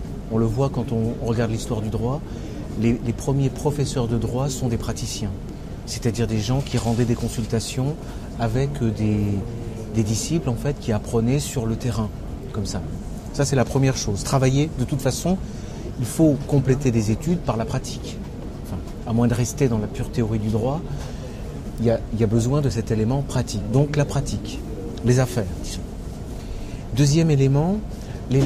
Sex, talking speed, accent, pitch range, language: male, 165 wpm, French, 115-140 Hz, French